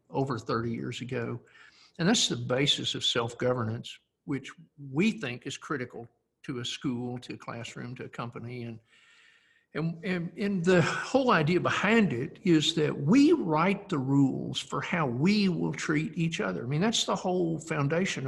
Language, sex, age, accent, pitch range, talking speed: English, male, 60-79, American, 130-170 Hz, 170 wpm